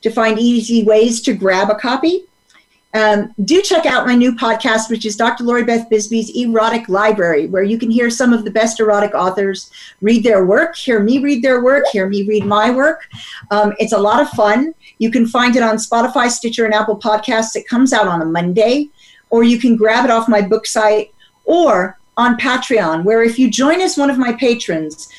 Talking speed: 210 wpm